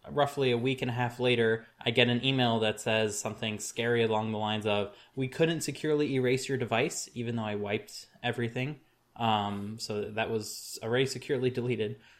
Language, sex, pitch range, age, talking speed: English, male, 110-130 Hz, 20-39, 180 wpm